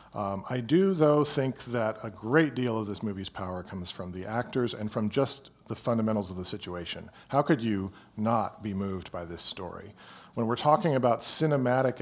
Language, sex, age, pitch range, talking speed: English, male, 40-59, 95-125 Hz, 195 wpm